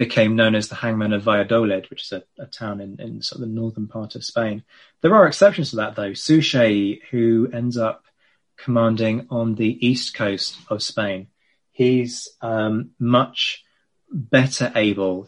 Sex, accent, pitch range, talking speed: male, British, 105-130 Hz, 170 wpm